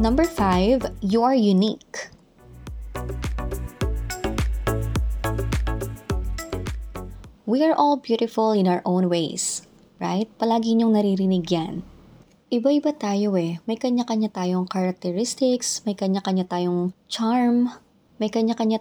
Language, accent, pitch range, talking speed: Filipino, native, 180-225 Hz, 100 wpm